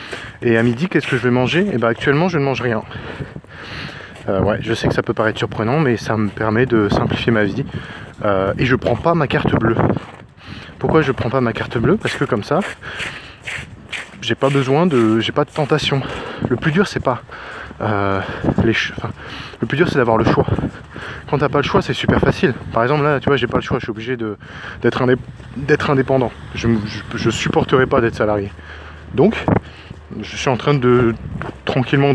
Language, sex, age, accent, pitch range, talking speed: English, male, 20-39, French, 110-145 Hz, 220 wpm